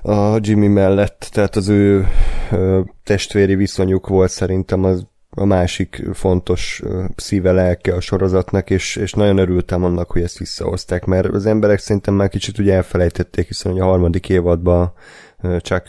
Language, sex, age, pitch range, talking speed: Hungarian, male, 20-39, 90-100 Hz, 145 wpm